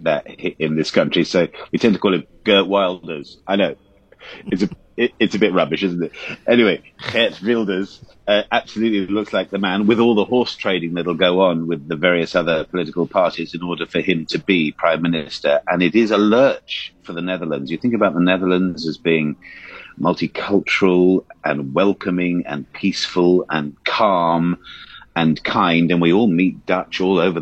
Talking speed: 185 wpm